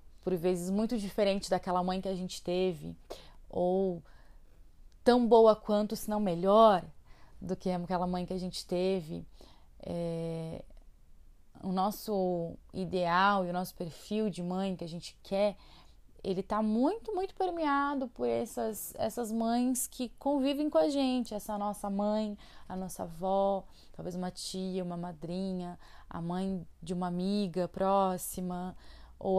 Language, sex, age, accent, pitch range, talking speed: Portuguese, female, 20-39, Brazilian, 175-250 Hz, 145 wpm